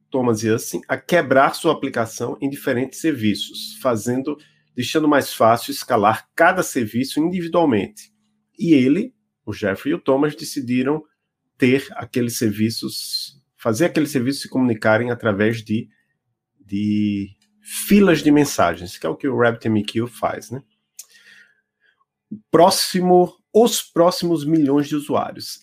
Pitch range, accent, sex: 110-160 Hz, Brazilian, male